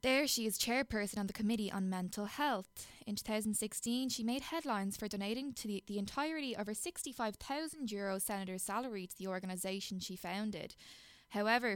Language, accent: English, Irish